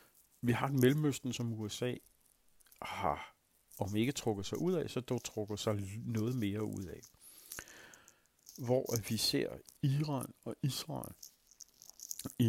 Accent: native